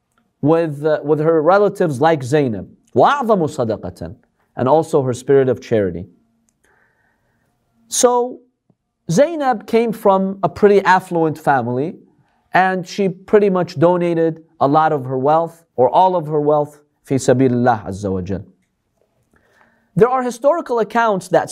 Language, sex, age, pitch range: English, male, 40-59, 150-215 Hz